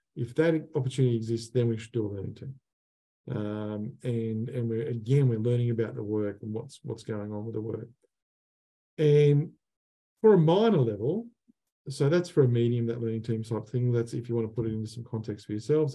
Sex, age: male, 50-69